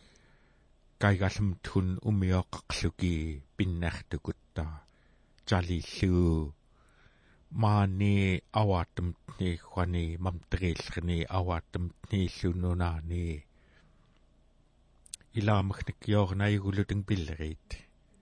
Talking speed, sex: 65 wpm, male